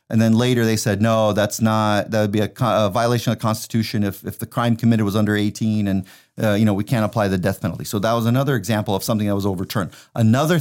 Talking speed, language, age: 260 wpm, English, 30-49